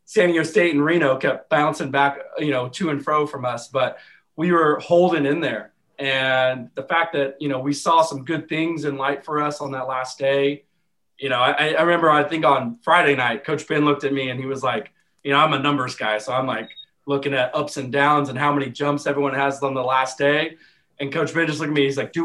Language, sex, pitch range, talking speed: English, male, 135-155 Hz, 250 wpm